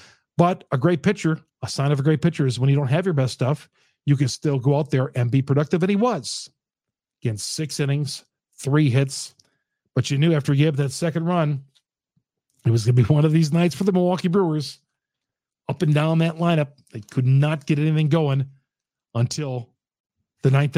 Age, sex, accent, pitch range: 50-69, male, American, 130-165 Hz